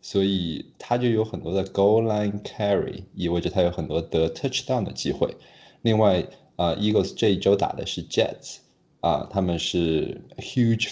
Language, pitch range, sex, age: Chinese, 80-105 Hz, male, 20-39